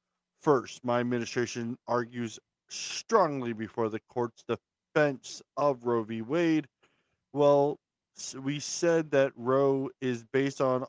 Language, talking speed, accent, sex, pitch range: English, 115 wpm, American, male, 115-140 Hz